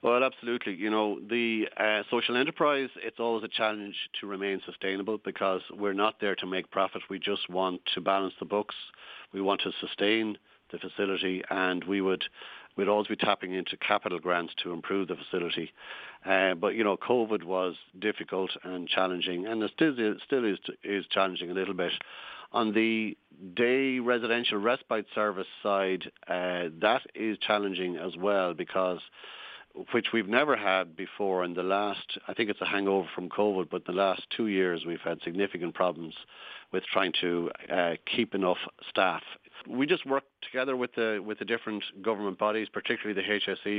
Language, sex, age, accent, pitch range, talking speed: English, male, 60-79, Irish, 95-110 Hz, 170 wpm